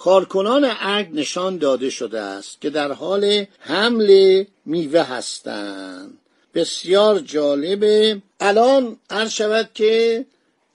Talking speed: 100 wpm